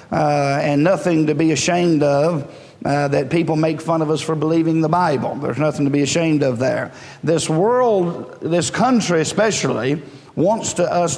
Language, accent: English, American